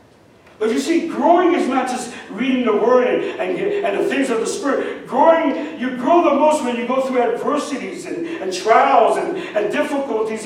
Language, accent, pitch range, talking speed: English, American, 220-320 Hz, 195 wpm